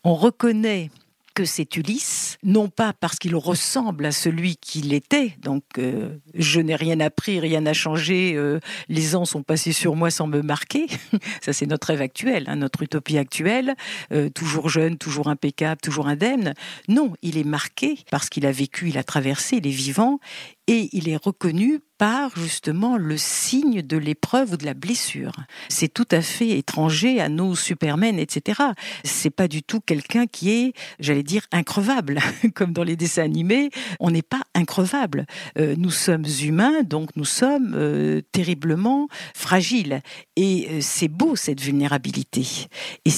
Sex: female